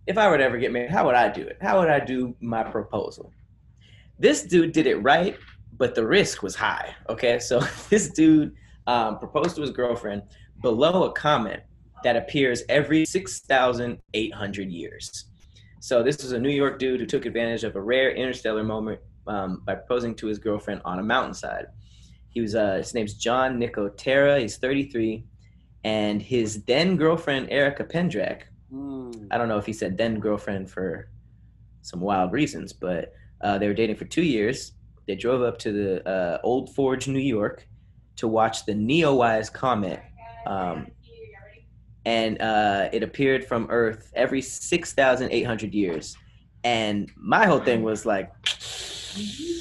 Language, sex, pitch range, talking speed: English, male, 105-135 Hz, 160 wpm